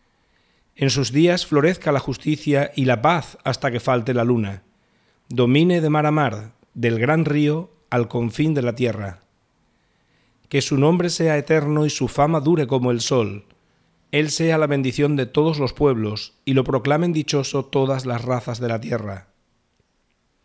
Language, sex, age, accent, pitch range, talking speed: Spanish, male, 40-59, Spanish, 120-150 Hz, 165 wpm